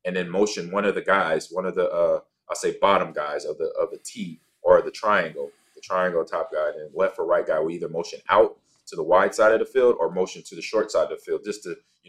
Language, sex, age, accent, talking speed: English, male, 20-39, American, 275 wpm